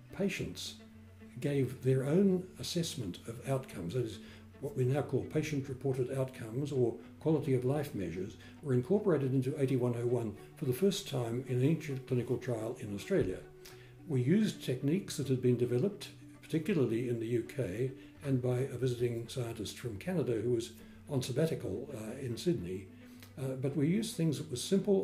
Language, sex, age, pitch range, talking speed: English, male, 60-79, 125-150 Hz, 165 wpm